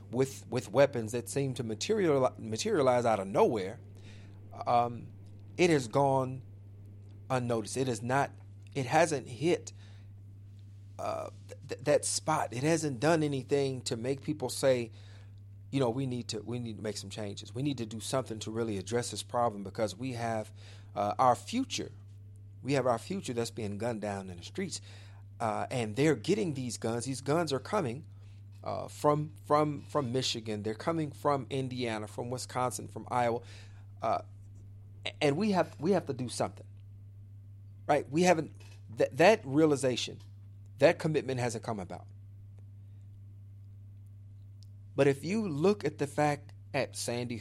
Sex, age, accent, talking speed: male, 40-59, American, 155 wpm